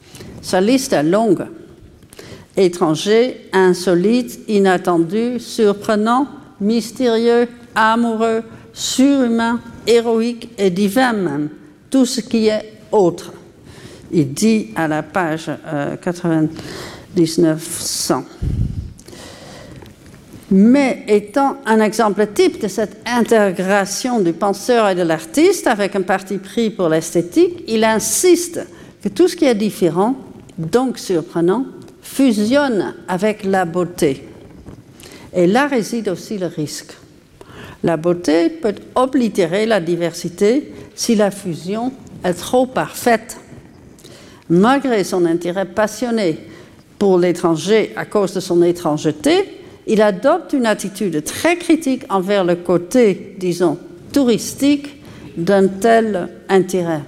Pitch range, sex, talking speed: 175-235 Hz, female, 110 wpm